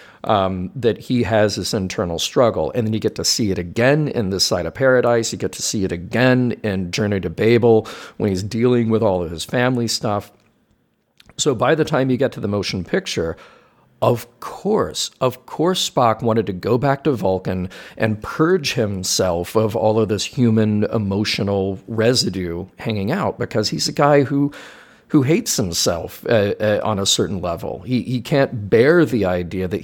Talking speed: 185 wpm